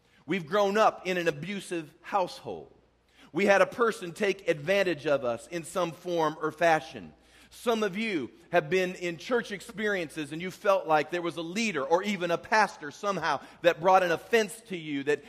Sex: male